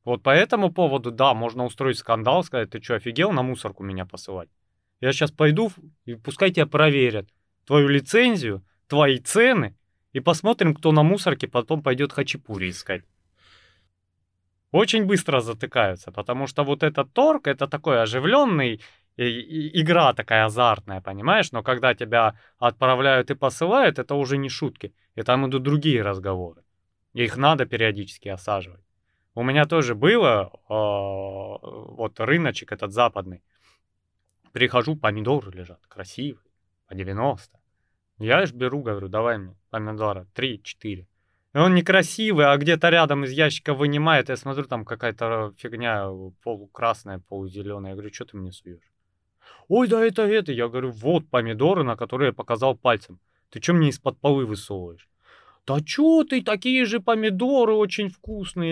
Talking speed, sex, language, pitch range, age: 145 wpm, male, Russian, 100-150 Hz, 20-39